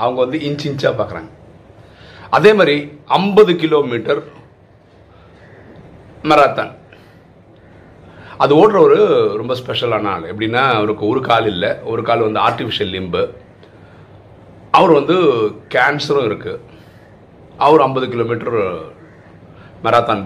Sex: male